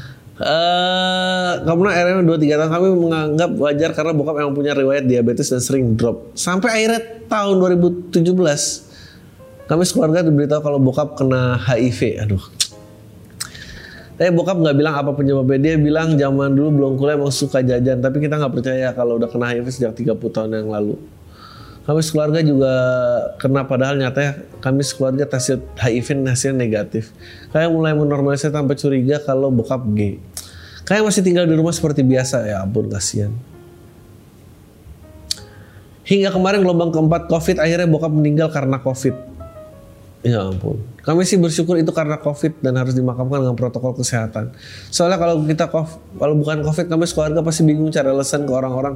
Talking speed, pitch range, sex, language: 155 wpm, 120-160 Hz, male, Indonesian